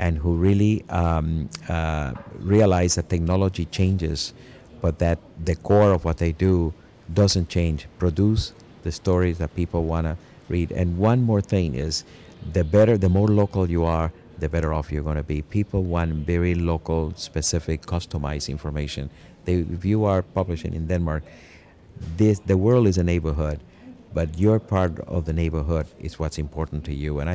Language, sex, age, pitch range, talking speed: Danish, male, 50-69, 80-95 Hz, 170 wpm